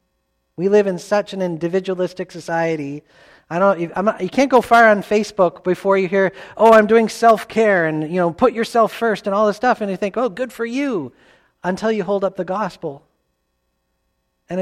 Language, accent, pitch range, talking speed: English, American, 145-200 Hz, 195 wpm